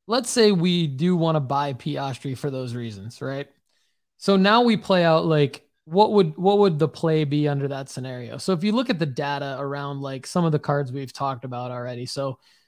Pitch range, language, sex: 140-180 Hz, English, male